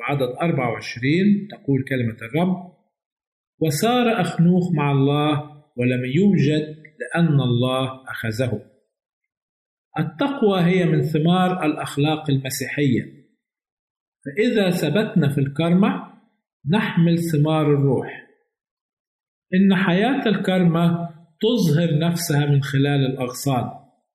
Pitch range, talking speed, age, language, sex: 135-185 Hz, 85 wpm, 50-69, Arabic, male